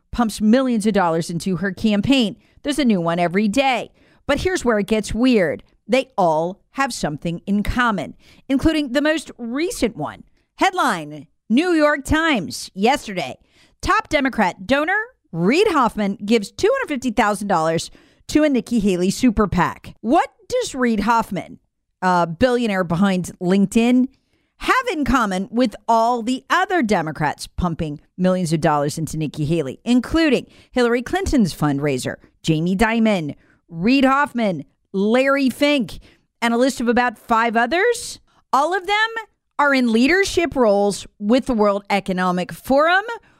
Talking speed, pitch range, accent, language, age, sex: 140 wpm, 185-275 Hz, American, English, 40-59, female